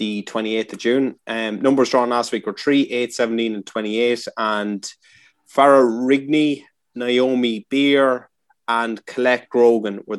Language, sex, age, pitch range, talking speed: English, male, 20-39, 110-130 Hz, 140 wpm